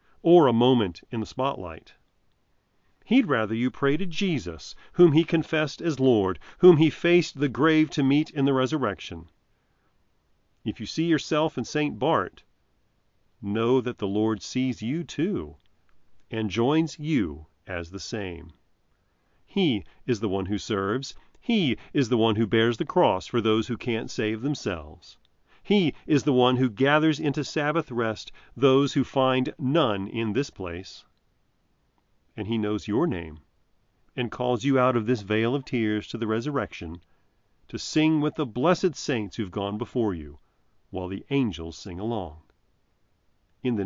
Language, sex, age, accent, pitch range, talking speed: English, male, 40-59, American, 95-140 Hz, 160 wpm